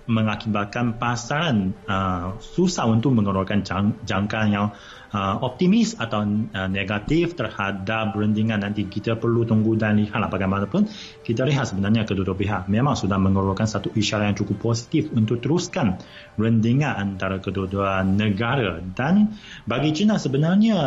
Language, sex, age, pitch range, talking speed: Malay, male, 30-49, 105-140 Hz, 125 wpm